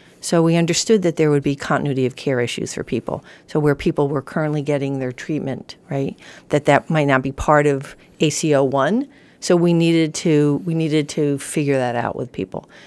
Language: English